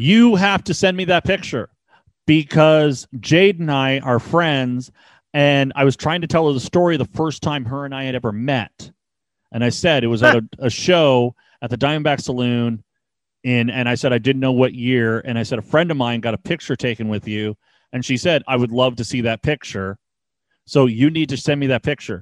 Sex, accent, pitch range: male, American, 125-170 Hz